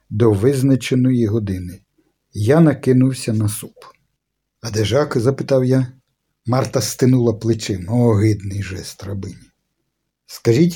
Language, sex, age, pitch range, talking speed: Ukrainian, male, 50-69, 105-145 Hz, 110 wpm